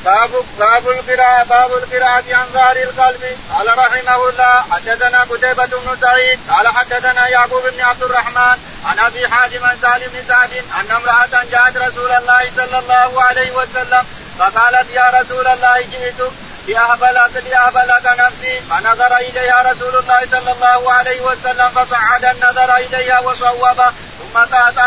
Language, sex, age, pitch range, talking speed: Arabic, male, 40-59, 245-255 Hz, 140 wpm